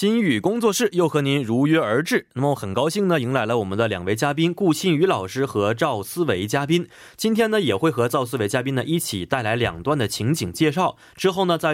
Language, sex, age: Korean, male, 20-39